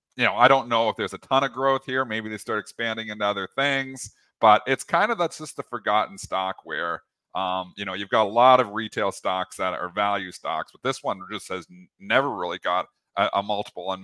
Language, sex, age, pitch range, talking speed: English, male, 30-49, 95-125 Hz, 240 wpm